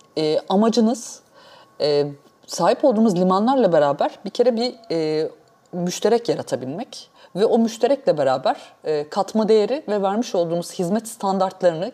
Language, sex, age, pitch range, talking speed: Turkish, female, 30-49, 165-225 Hz, 125 wpm